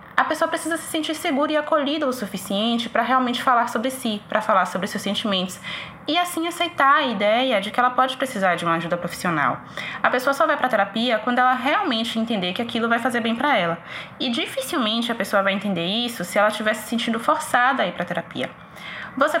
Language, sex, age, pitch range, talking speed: Portuguese, female, 20-39, 200-275 Hz, 220 wpm